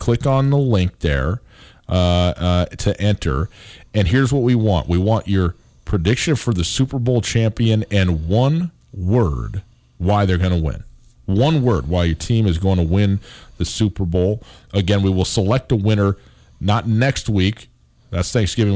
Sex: male